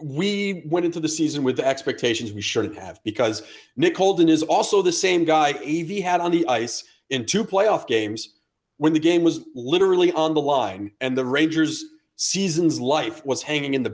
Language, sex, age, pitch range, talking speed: English, male, 40-59, 120-195 Hz, 195 wpm